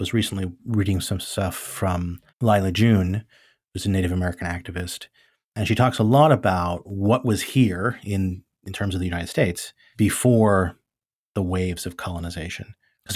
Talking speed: 160 wpm